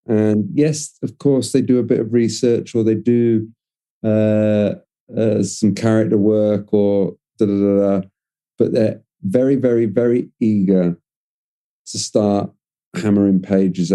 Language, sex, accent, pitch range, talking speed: English, male, British, 100-120 Hz, 140 wpm